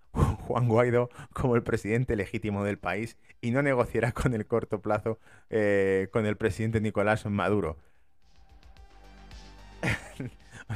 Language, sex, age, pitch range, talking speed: Spanish, male, 30-49, 95-120 Hz, 125 wpm